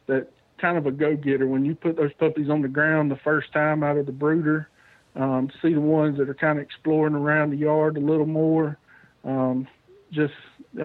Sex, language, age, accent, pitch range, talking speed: male, English, 50-69, American, 140-155 Hz, 205 wpm